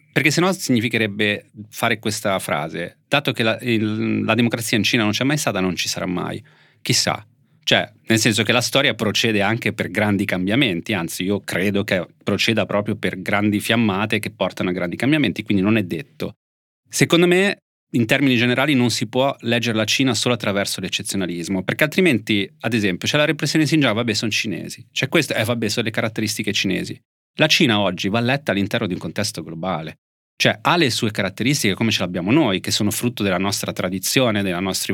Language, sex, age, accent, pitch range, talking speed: Italian, male, 30-49, native, 100-125 Hz, 200 wpm